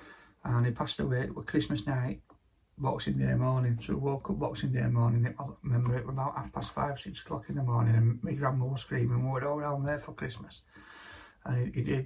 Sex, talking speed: male, 220 wpm